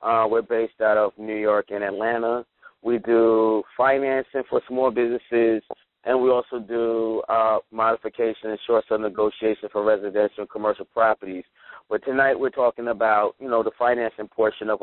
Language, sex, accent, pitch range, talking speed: English, male, American, 105-120 Hz, 160 wpm